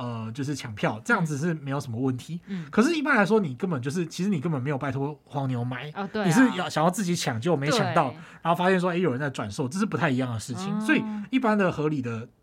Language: Chinese